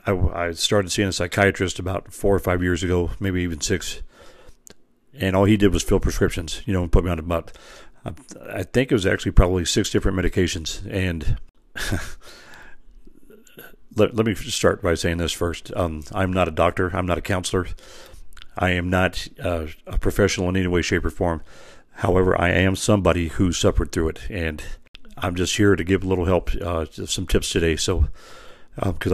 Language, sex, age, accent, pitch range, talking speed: English, male, 40-59, American, 85-95 Hz, 185 wpm